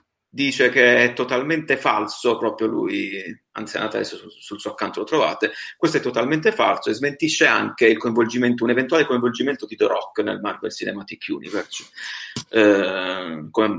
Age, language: 30-49, Italian